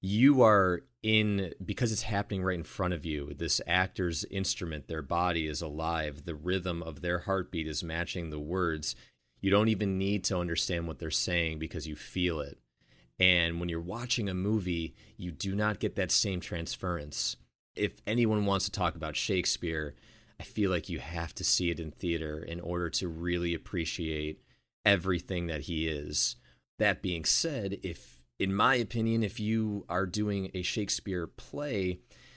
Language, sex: English, male